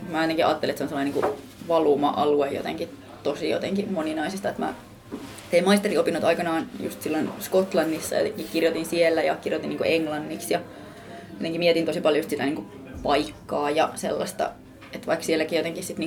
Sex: female